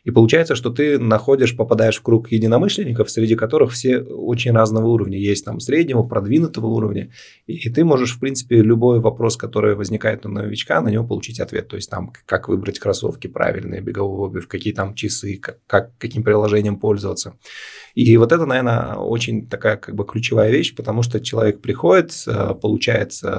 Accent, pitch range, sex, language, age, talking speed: native, 100-115 Hz, male, Russian, 20-39, 170 wpm